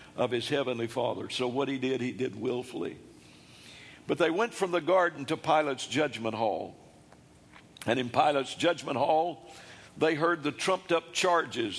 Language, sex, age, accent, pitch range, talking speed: English, male, 60-79, American, 120-160 Hz, 165 wpm